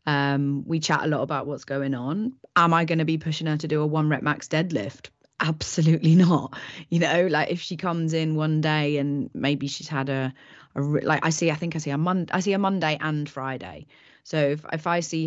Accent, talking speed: British, 235 wpm